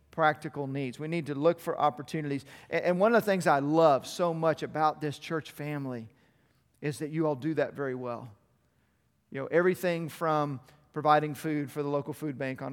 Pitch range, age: 145-170 Hz, 40-59